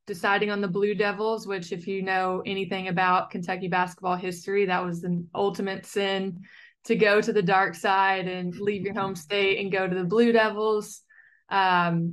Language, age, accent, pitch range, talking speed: English, 20-39, American, 180-205 Hz, 185 wpm